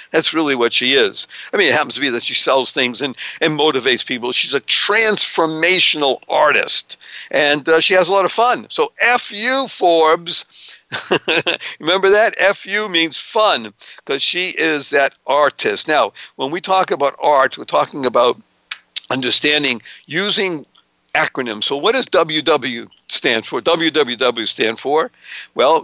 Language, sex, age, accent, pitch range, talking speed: English, male, 60-79, American, 135-185 Hz, 155 wpm